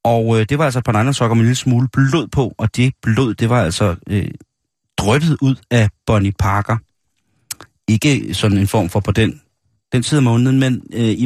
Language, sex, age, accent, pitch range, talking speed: Danish, male, 30-49, native, 100-125 Hz, 215 wpm